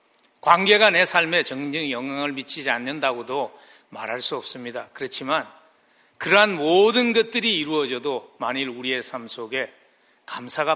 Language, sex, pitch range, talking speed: English, male, 135-200 Hz, 110 wpm